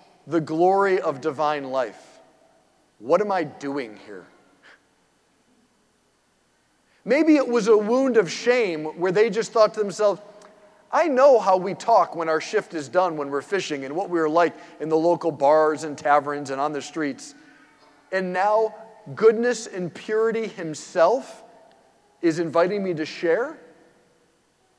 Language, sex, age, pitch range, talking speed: English, male, 40-59, 155-230 Hz, 150 wpm